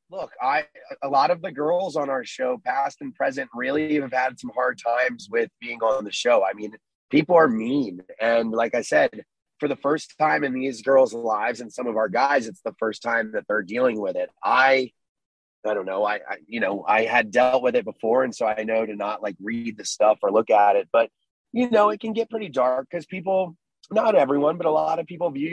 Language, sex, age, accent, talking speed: English, male, 30-49, American, 235 wpm